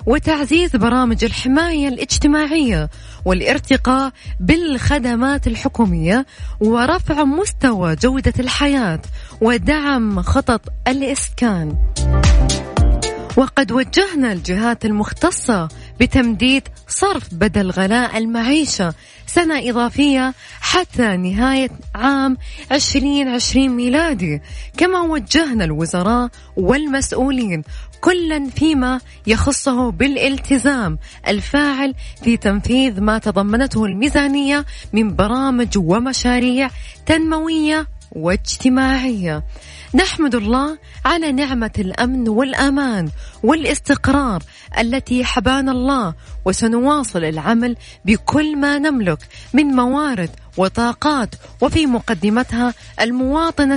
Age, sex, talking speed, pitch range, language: 20-39, female, 75 wpm, 220-280 Hz, Arabic